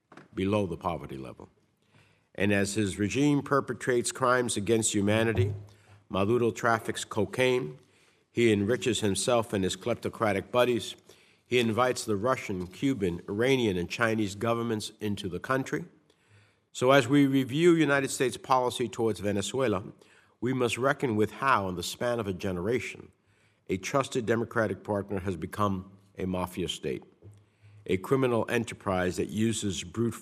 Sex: male